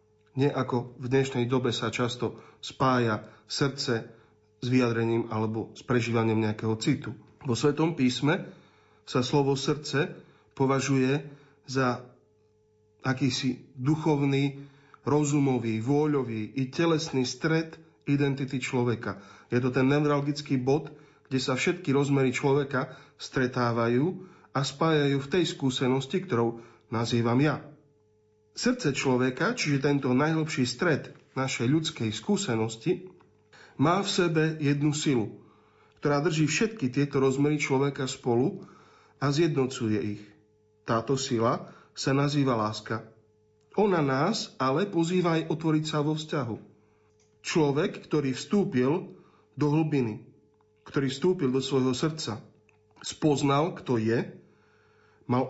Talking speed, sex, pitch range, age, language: 110 wpm, male, 115-150 Hz, 40-59, Slovak